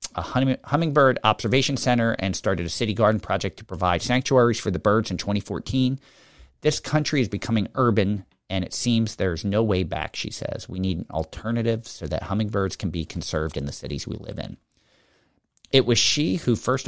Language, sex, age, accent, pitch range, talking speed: English, male, 40-59, American, 90-115 Hz, 190 wpm